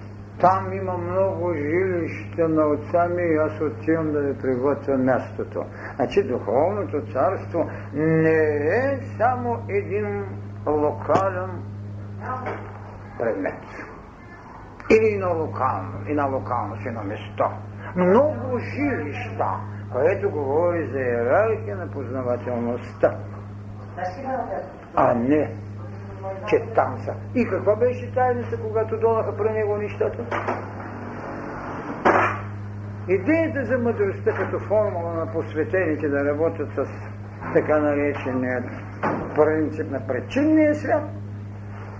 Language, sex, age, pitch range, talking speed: Bulgarian, male, 60-79, 100-140 Hz, 100 wpm